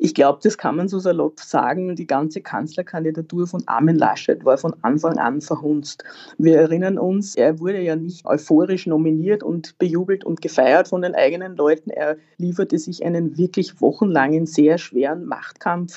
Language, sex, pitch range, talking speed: German, female, 155-180 Hz, 170 wpm